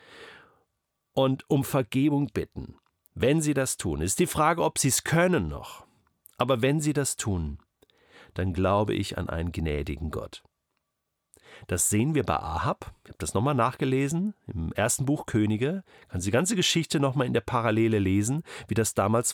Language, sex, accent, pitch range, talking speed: German, male, German, 100-150 Hz, 170 wpm